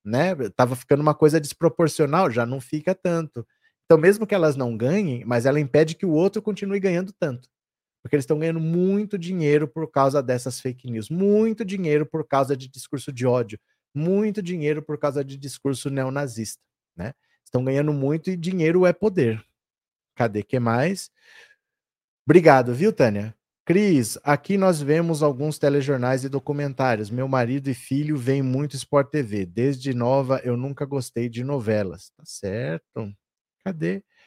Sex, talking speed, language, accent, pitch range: male, 160 wpm, Portuguese, Brazilian, 130-175 Hz